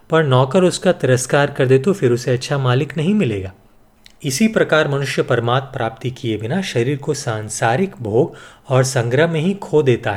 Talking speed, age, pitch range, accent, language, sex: 170 wpm, 30-49, 115-155 Hz, native, Hindi, male